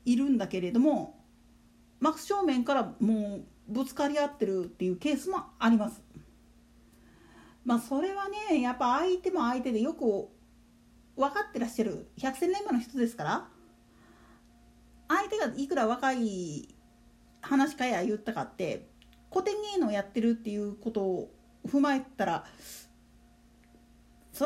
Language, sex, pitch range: Japanese, female, 215-315 Hz